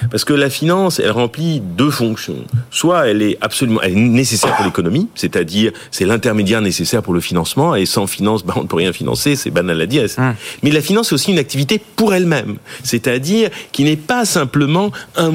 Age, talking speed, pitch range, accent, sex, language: 40-59, 205 wpm, 100-160 Hz, French, male, French